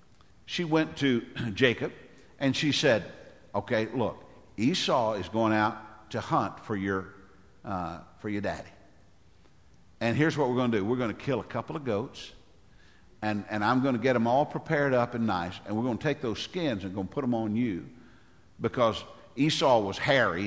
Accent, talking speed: American, 195 wpm